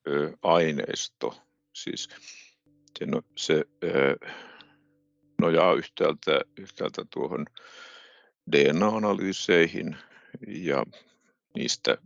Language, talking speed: Finnish, 50 wpm